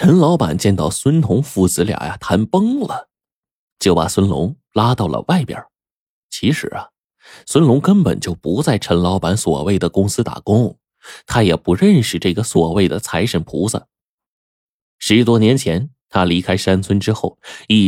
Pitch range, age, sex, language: 90-135 Hz, 20-39, male, Chinese